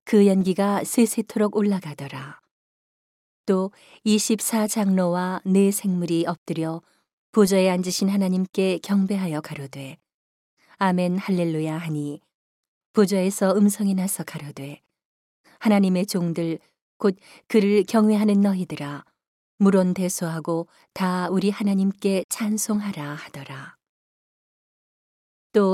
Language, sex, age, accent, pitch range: Korean, female, 40-59, native, 170-205 Hz